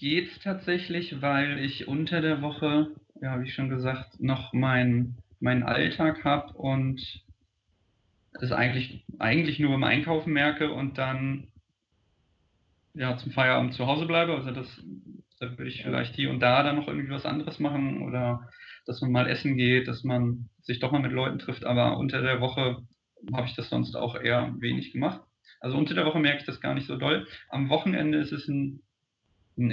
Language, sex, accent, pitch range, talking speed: German, male, German, 120-145 Hz, 185 wpm